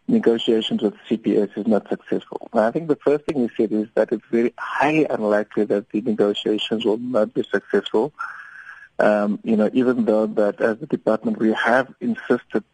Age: 50-69